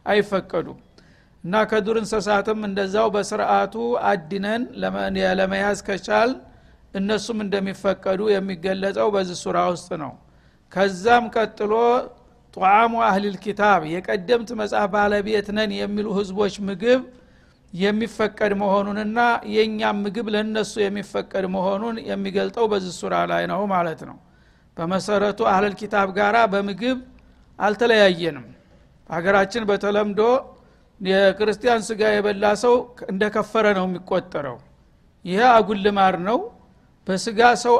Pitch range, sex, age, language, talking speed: 195-220 Hz, male, 60-79, Amharic, 90 wpm